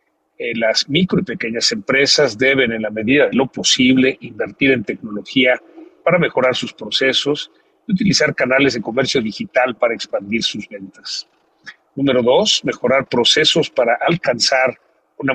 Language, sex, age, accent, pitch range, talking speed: Spanish, male, 50-69, Mexican, 115-150 Hz, 140 wpm